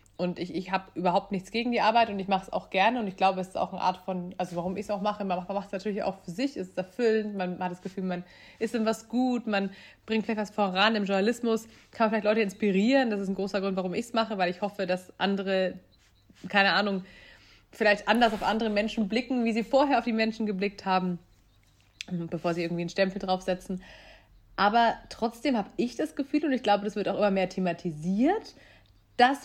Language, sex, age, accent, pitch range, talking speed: German, female, 30-49, German, 185-230 Hz, 230 wpm